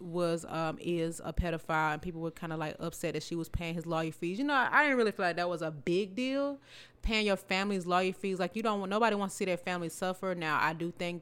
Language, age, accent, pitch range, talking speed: English, 20-39, American, 170-215 Hz, 280 wpm